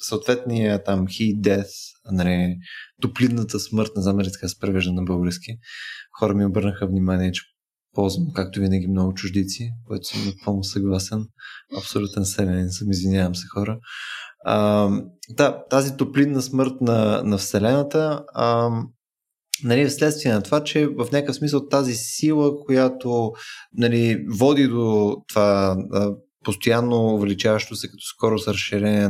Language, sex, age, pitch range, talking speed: Bulgarian, male, 20-39, 100-135 Hz, 130 wpm